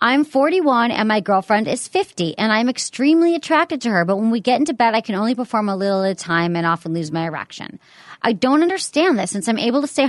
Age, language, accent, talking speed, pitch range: 40-59, English, American, 250 wpm, 190-255 Hz